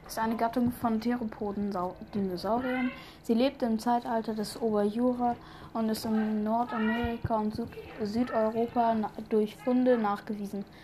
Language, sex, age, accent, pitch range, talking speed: German, female, 20-39, German, 220-240 Hz, 120 wpm